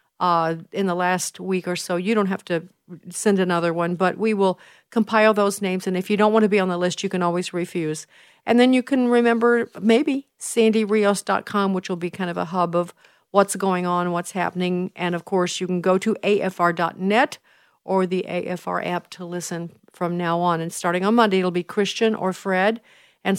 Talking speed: 210 wpm